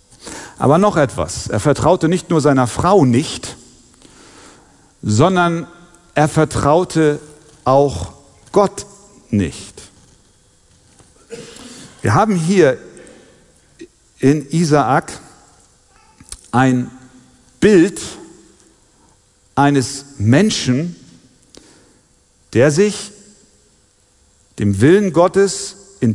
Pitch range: 125-180 Hz